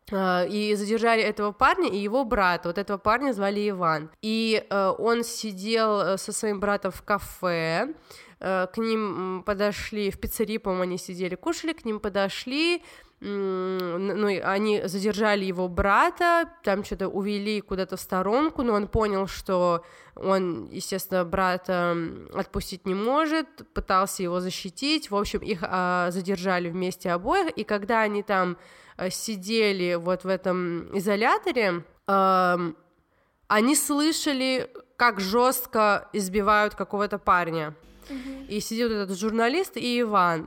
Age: 20-39